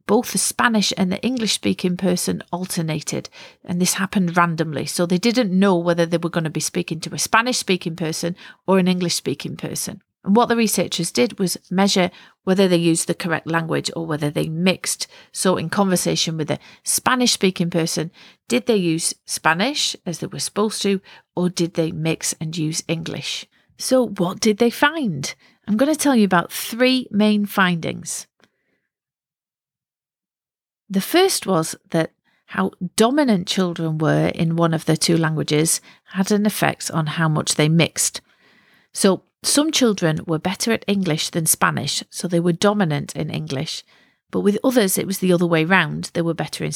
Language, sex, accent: English, female, British